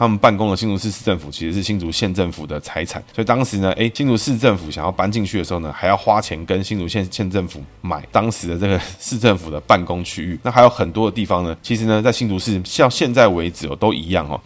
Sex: male